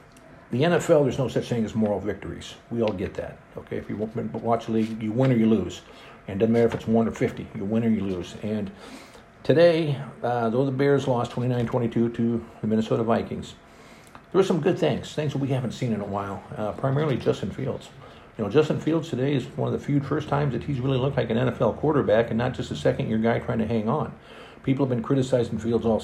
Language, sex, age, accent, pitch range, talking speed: English, male, 50-69, American, 110-130 Hz, 235 wpm